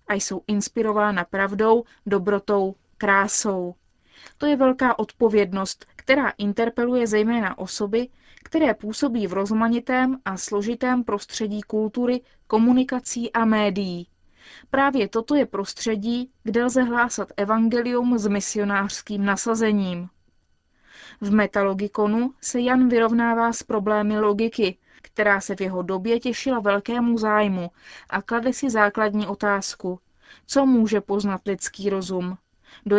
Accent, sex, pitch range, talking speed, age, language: native, female, 200-240 Hz, 115 wpm, 20-39, Czech